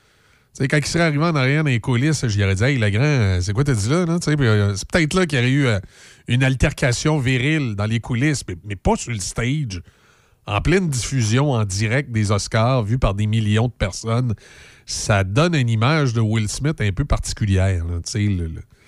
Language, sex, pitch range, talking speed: French, male, 110-140 Hz, 210 wpm